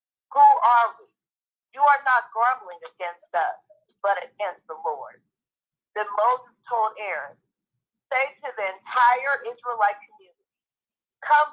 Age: 50-69